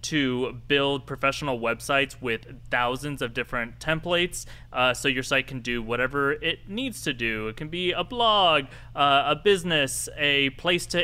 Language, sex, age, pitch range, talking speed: English, male, 20-39, 125-160 Hz, 170 wpm